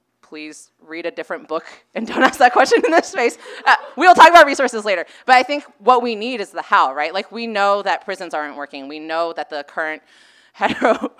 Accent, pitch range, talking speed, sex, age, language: American, 150-200 Hz, 225 wpm, female, 20-39, English